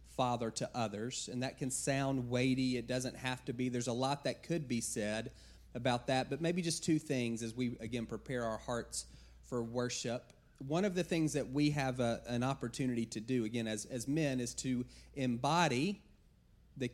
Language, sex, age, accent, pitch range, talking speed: English, male, 30-49, American, 115-140 Hz, 195 wpm